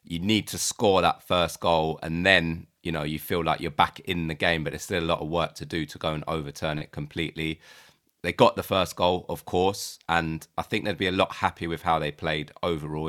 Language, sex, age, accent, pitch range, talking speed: English, male, 30-49, British, 75-85 Hz, 250 wpm